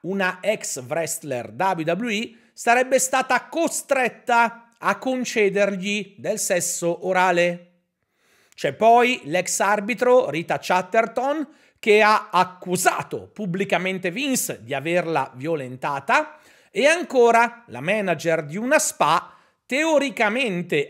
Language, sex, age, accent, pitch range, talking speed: Italian, male, 40-59, native, 175-245 Hz, 100 wpm